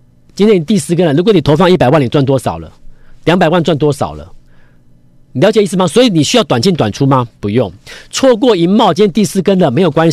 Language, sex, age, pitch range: Chinese, male, 40-59, 125-190 Hz